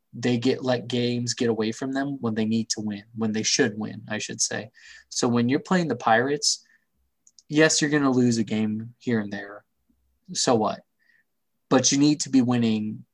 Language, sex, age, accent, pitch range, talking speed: English, male, 20-39, American, 110-130 Hz, 200 wpm